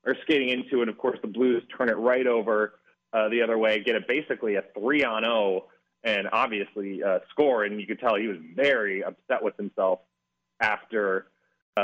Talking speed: 190 wpm